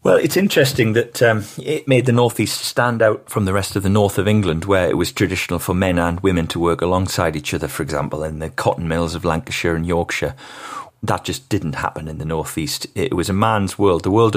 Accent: British